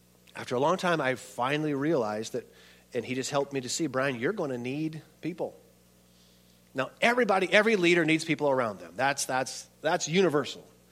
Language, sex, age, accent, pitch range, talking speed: English, male, 40-59, American, 130-185 Hz, 180 wpm